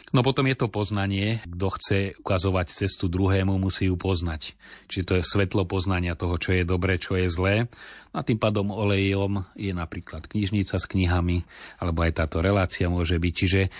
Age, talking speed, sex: 30-49, 185 wpm, male